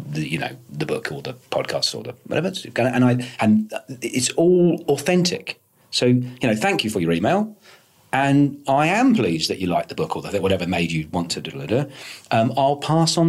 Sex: male